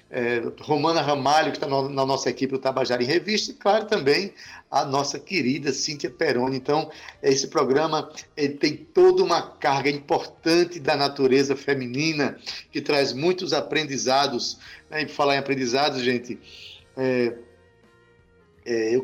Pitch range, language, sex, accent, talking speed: 130-155 Hz, Portuguese, male, Brazilian, 130 wpm